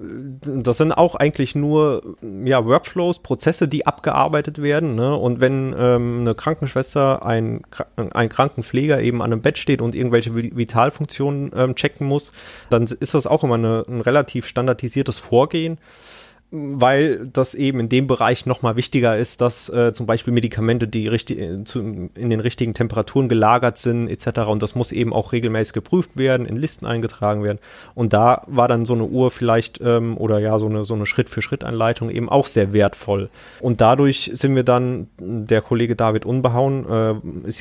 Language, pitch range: German, 115-135 Hz